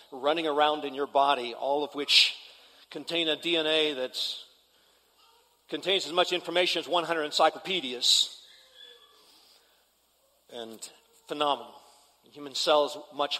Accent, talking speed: American, 115 wpm